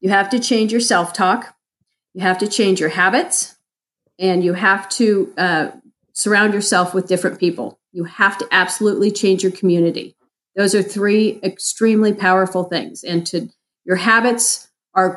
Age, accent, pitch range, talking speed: 40-59, American, 175-205 Hz, 160 wpm